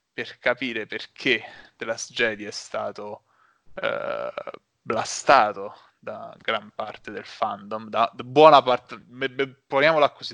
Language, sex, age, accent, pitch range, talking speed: Italian, male, 20-39, native, 110-130 Hz, 120 wpm